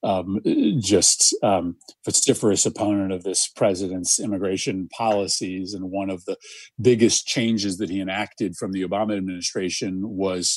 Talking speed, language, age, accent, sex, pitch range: 135 wpm, English, 40-59, American, male, 95-110 Hz